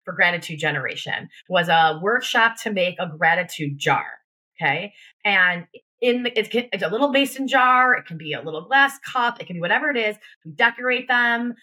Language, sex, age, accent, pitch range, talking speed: English, female, 20-39, American, 170-235 Hz, 190 wpm